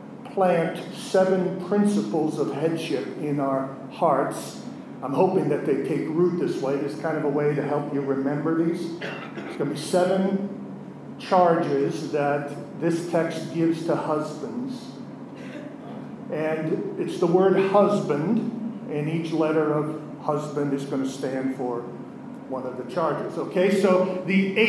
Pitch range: 175-215 Hz